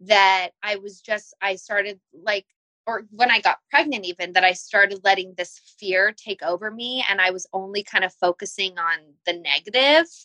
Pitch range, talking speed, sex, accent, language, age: 185-215 Hz, 185 wpm, female, American, English, 20-39